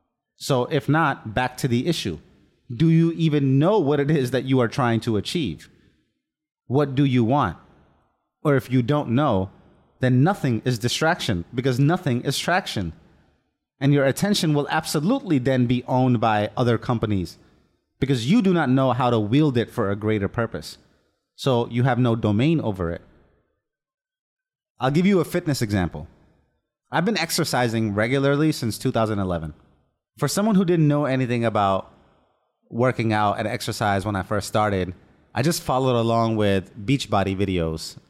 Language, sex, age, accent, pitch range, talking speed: English, male, 30-49, American, 110-145 Hz, 160 wpm